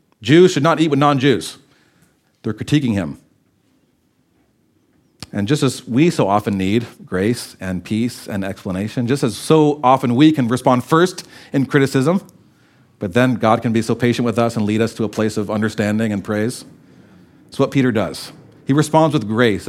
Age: 40-59